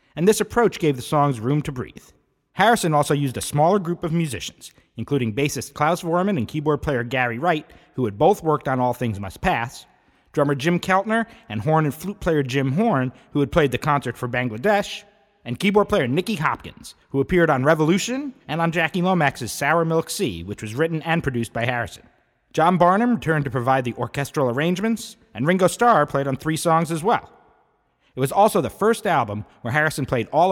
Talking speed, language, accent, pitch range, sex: 200 wpm, English, American, 130-180 Hz, male